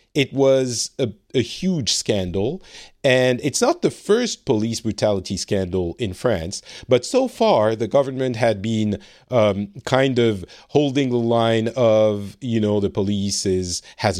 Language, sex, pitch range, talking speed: English, male, 95-125 Hz, 150 wpm